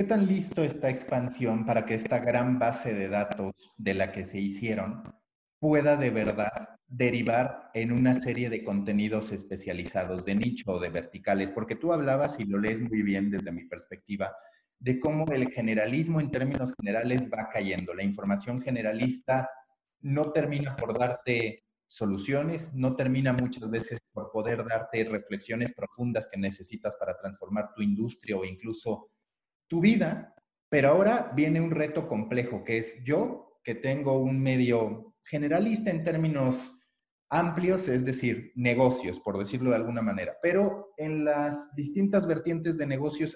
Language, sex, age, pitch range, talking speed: Spanish, male, 30-49, 110-150 Hz, 155 wpm